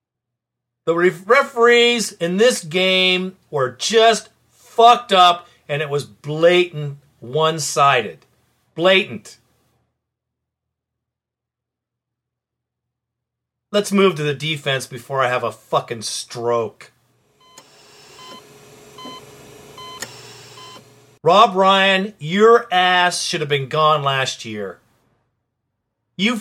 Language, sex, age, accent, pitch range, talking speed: English, male, 40-59, American, 140-235 Hz, 85 wpm